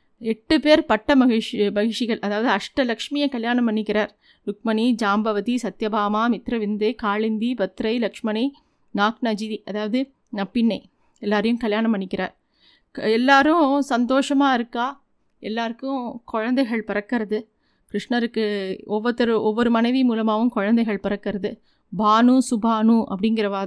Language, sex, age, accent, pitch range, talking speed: Tamil, female, 30-49, native, 210-250 Hz, 95 wpm